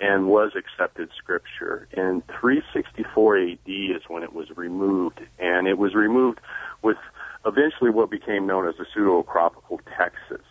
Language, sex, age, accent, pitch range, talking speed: English, male, 40-59, American, 85-100 Hz, 145 wpm